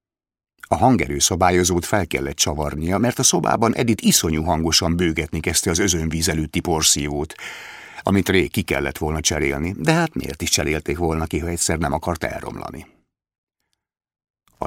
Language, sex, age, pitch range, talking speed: Hungarian, male, 60-79, 80-100 Hz, 145 wpm